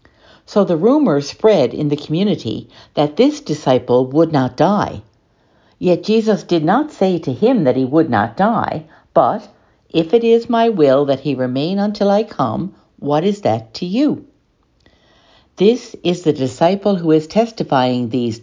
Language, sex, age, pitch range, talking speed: English, female, 60-79, 135-205 Hz, 165 wpm